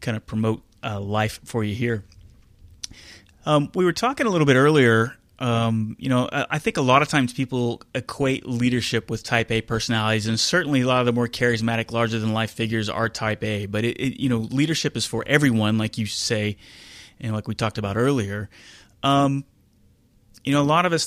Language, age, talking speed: English, 30-49, 215 wpm